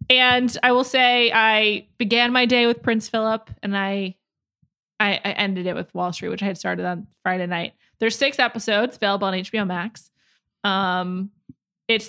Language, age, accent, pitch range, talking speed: English, 20-39, American, 195-235 Hz, 180 wpm